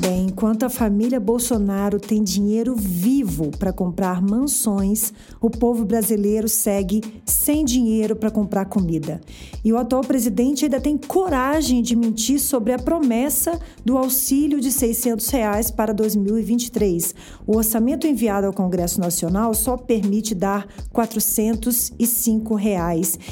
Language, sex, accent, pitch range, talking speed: Portuguese, female, Brazilian, 210-255 Hz, 130 wpm